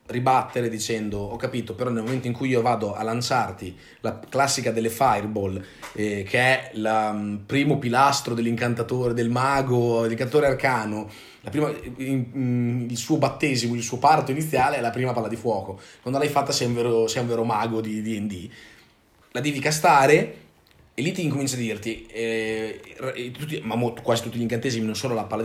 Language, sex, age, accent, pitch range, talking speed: Italian, male, 30-49, native, 115-140 Hz, 185 wpm